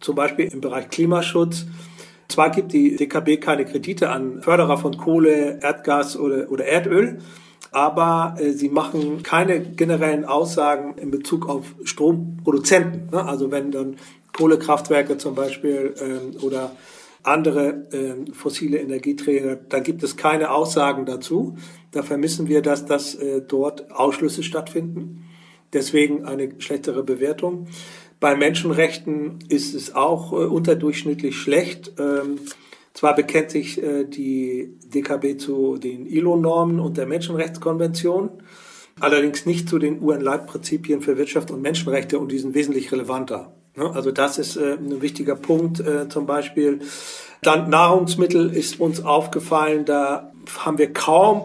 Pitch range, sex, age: 140-165 Hz, male, 40-59